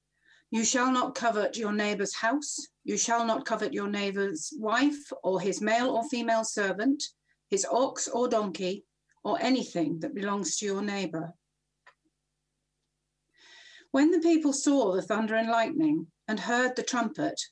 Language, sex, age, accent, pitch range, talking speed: English, female, 50-69, British, 185-255 Hz, 145 wpm